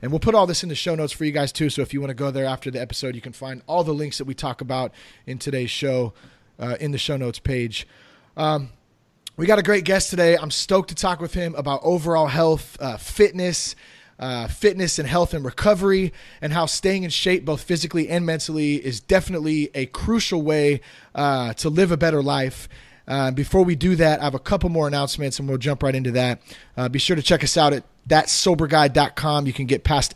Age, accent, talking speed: 30-49, American, 230 wpm